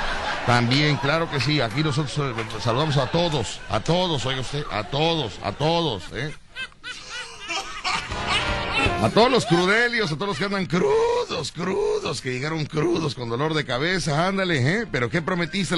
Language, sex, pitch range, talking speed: Spanish, male, 115-175 Hz, 155 wpm